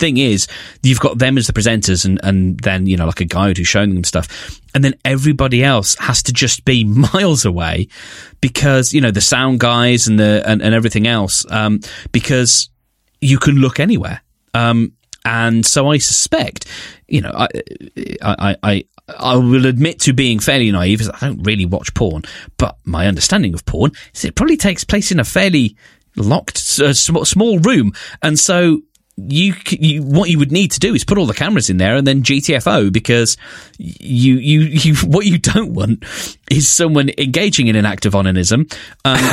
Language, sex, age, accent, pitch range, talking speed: English, male, 30-49, British, 105-150 Hz, 190 wpm